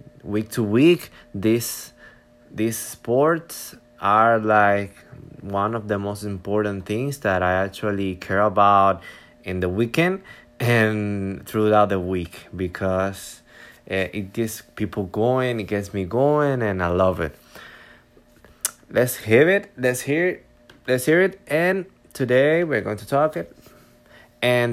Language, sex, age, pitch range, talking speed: Spanish, male, 20-39, 100-125 Hz, 140 wpm